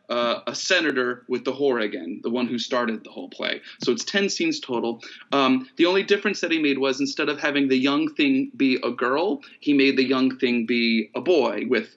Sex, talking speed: male, 225 wpm